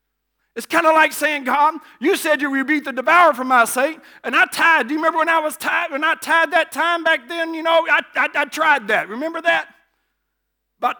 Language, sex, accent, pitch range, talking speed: English, male, American, 275-335 Hz, 240 wpm